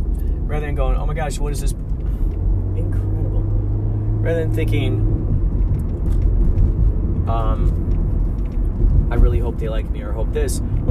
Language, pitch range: English, 85-115 Hz